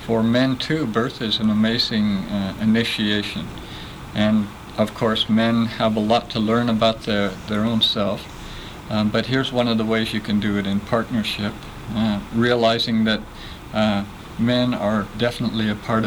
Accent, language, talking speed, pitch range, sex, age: American, English, 170 wpm, 105-115 Hz, male, 50-69